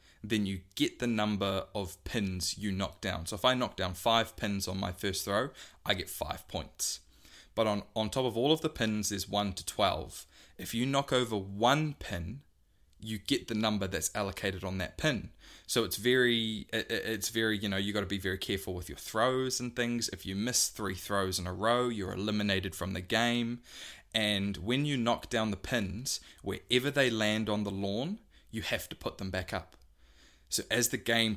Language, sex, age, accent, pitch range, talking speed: English, male, 20-39, Australian, 95-115 Hz, 210 wpm